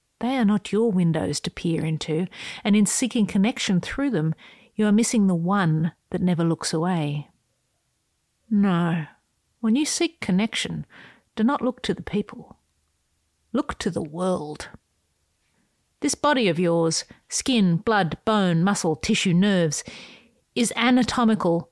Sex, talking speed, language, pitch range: female, 140 wpm, English, 170-225 Hz